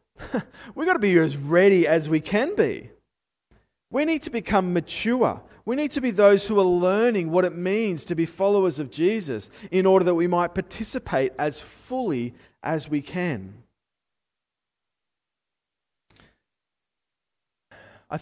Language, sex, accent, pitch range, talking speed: English, male, Australian, 145-200 Hz, 140 wpm